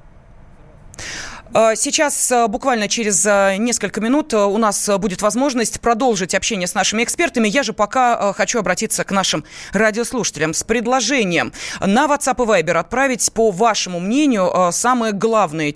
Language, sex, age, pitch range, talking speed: Russian, female, 30-49, 185-250 Hz, 130 wpm